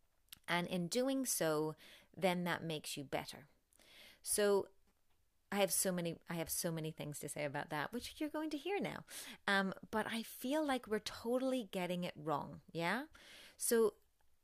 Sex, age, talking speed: female, 30-49, 170 wpm